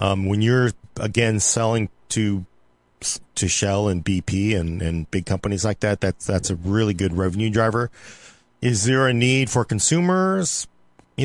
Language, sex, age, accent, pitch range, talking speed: English, male, 40-59, American, 100-135 Hz, 160 wpm